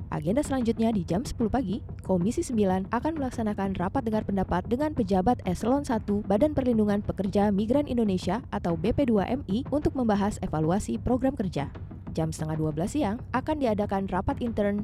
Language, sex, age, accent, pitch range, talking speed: Indonesian, female, 20-39, native, 185-255 Hz, 150 wpm